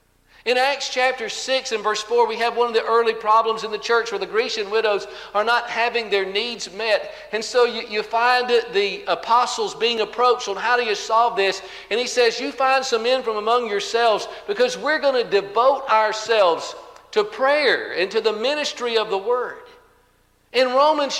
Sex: male